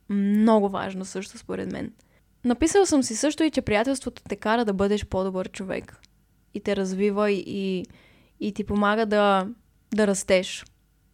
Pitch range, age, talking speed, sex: 200-240 Hz, 20-39, 150 wpm, female